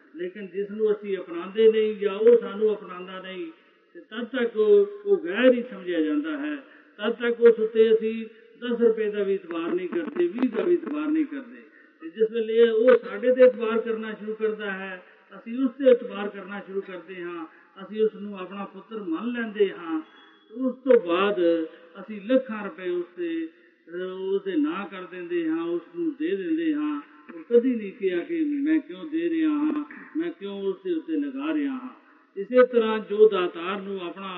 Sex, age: male, 50-69